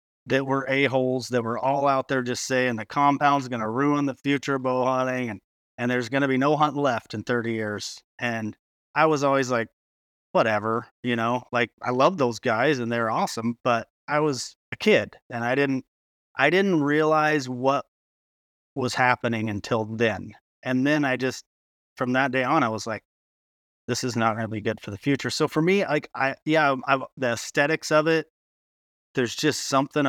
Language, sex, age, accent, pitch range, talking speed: English, male, 30-49, American, 115-140 Hz, 190 wpm